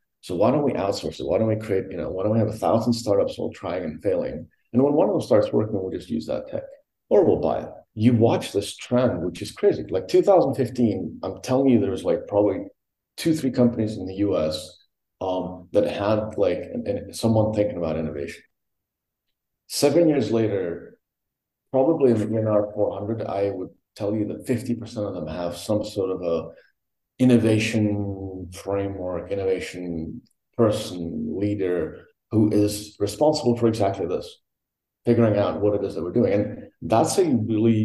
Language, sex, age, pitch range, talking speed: English, male, 40-59, 95-115 Hz, 180 wpm